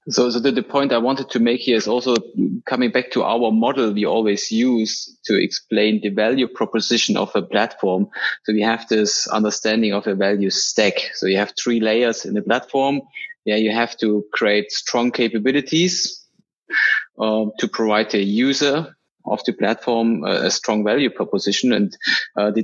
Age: 20-39